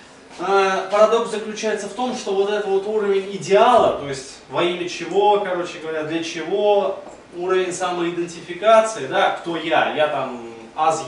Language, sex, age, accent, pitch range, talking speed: Russian, male, 20-39, native, 140-185 Hz, 145 wpm